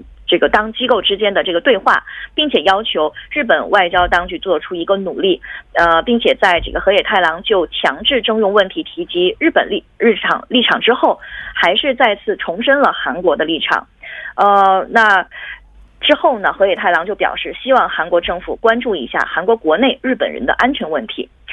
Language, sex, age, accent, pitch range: Korean, female, 20-39, Chinese, 180-275 Hz